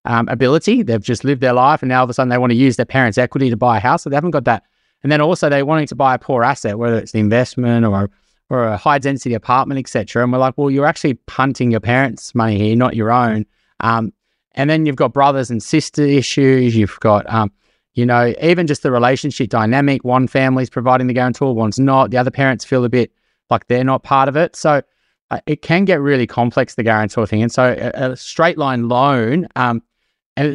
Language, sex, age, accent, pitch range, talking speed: English, male, 20-39, Australian, 120-145 Hz, 240 wpm